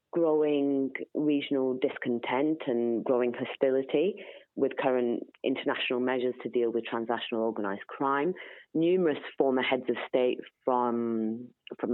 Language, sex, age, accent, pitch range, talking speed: English, female, 30-49, British, 120-145 Hz, 115 wpm